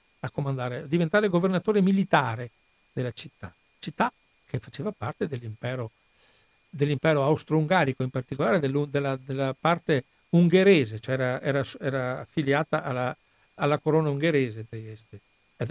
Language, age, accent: Italian, 60-79, native